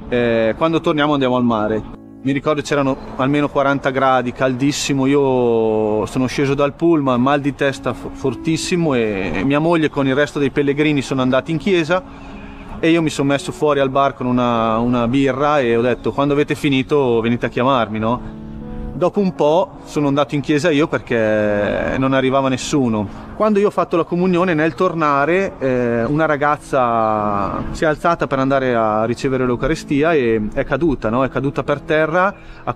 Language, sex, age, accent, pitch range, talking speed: Italian, male, 30-49, native, 120-150 Hz, 170 wpm